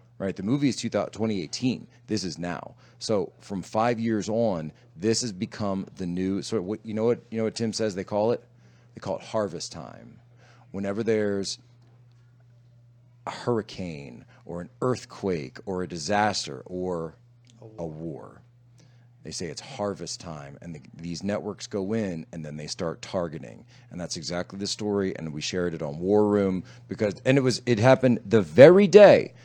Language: English